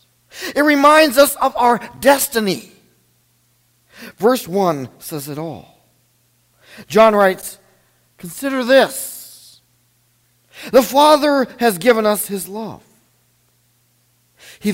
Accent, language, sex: American, English, male